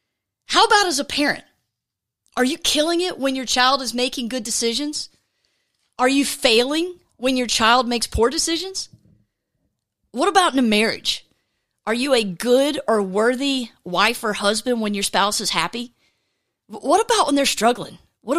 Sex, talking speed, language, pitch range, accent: female, 165 wpm, English, 220-285 Hz, American